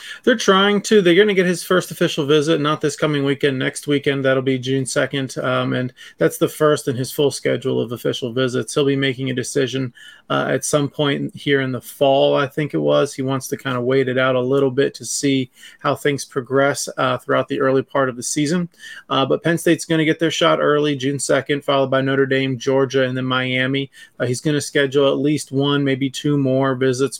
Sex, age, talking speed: male, 30-49, 235 wpm